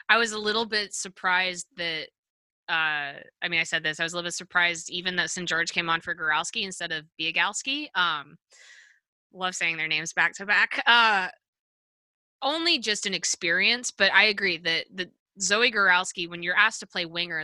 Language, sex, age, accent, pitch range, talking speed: English, female, 20-39, American, 165-210 Hz, 195 wpm